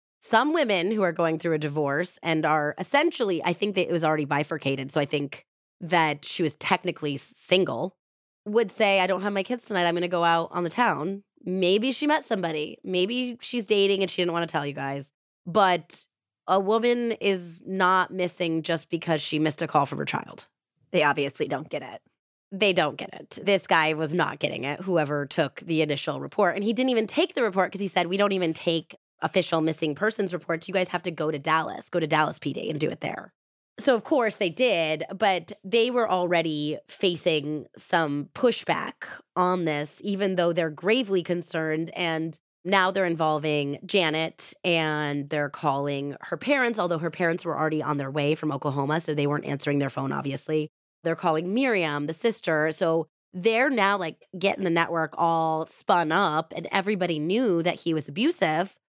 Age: 20-39